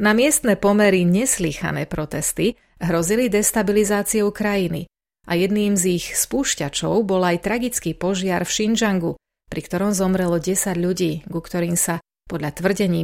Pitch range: 170-215 Hz